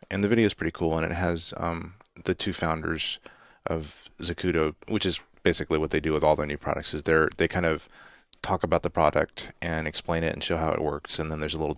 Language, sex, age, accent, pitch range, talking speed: English, male, 30-49, American, 80-100 Hz, 245 wpm